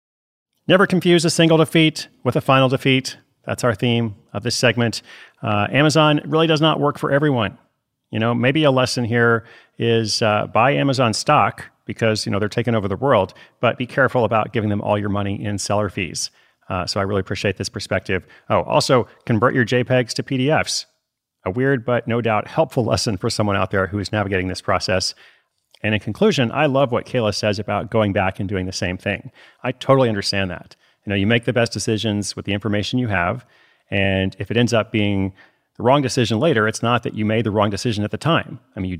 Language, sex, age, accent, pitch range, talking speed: English, male, 40-59, American, 100-130 Hz, 215 wpm